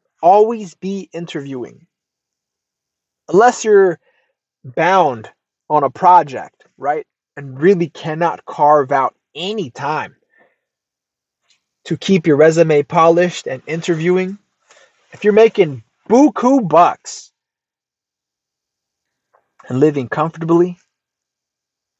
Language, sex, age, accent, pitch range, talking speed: English, male, 20-39, American, 140-175 Hz, 85 wpm